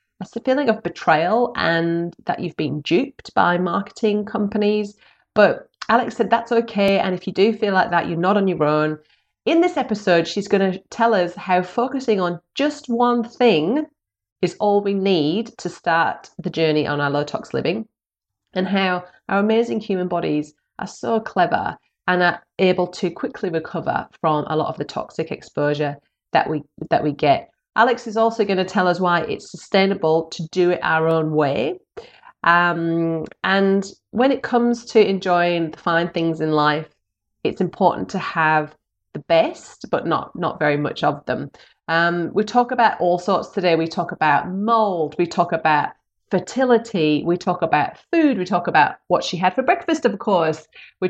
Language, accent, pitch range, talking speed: English, British, 165-220 Hz, 180 wpm